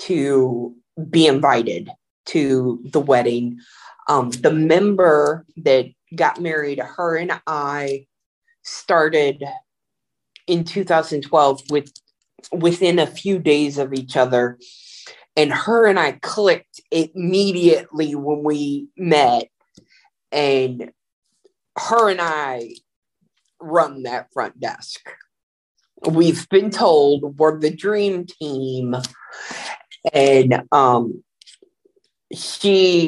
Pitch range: 145-190 Hz